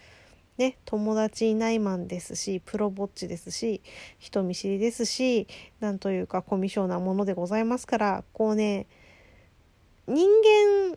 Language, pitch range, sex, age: Japanese, 190-265 Hz, female, 20-39